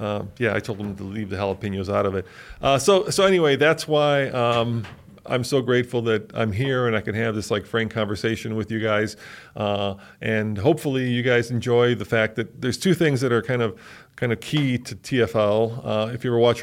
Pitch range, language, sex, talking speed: 110-130 Hz, English, male, 225 wpm